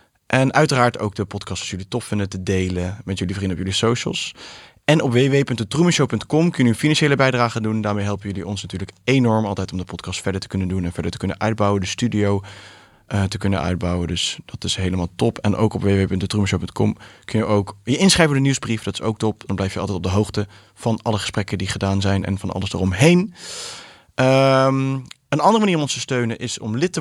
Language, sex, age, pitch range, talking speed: English, male, 20-39, 100-135 Hz, 225 wpm